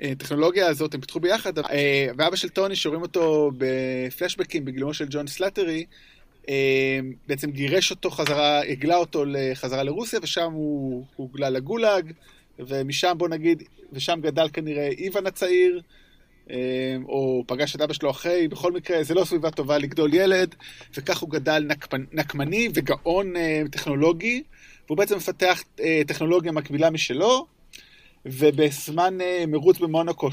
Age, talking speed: 20-39, 130 wpm